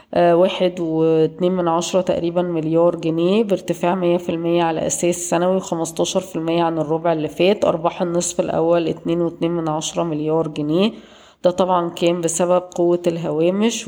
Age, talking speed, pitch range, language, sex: 20-39, 140 wpm, 160-180 Hz, Arabic, female